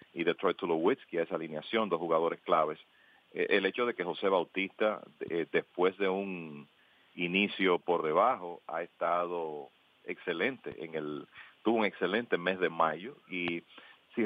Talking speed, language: 140 wpm, English